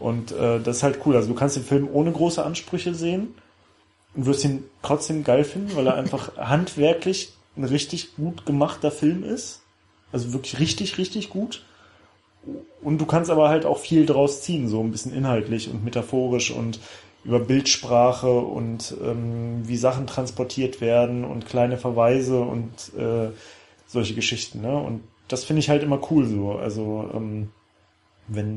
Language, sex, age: German, male, 30-49